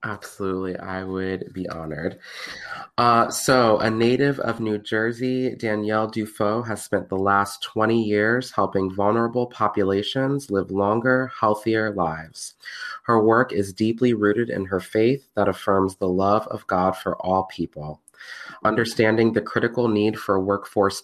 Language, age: English, 20-39